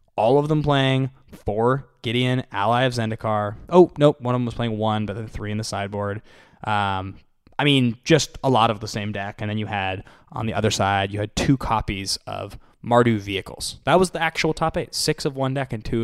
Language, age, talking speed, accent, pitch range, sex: English, 10-29, 225 wpm, American, 105-135 Hz, male